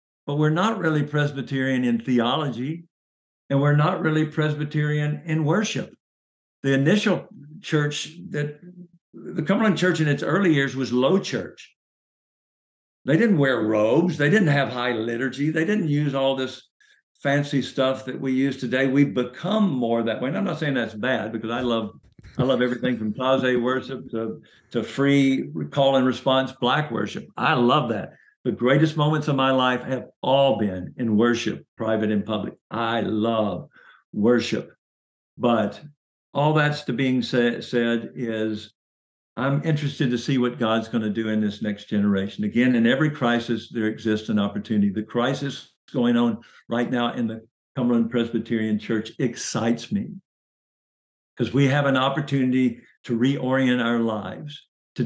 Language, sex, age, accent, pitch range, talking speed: English, male, 60-79, American, 115-150 Hz, 160 wpm